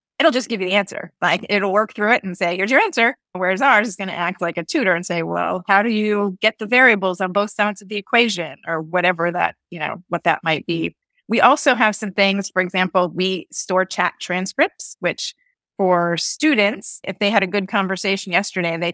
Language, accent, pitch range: English, American, 175-210 Hz